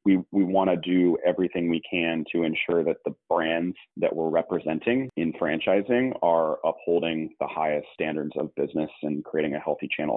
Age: 30-49